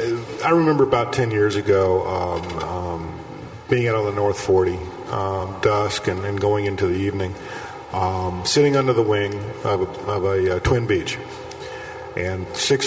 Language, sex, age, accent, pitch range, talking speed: English, male, 50-69, American, 100-130 Hz, 165 wpm